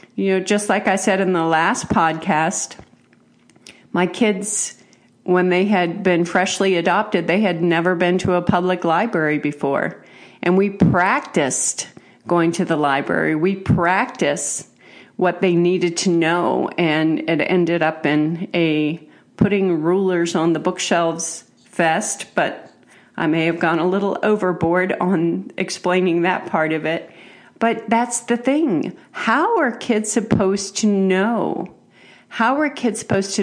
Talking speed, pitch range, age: 145 wpm, 170-200 Hz, 50-69